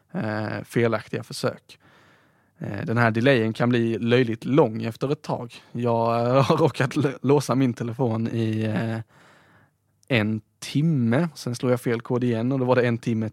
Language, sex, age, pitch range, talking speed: Swedish, male, 20-39, 115-145 Hz, 150 wpm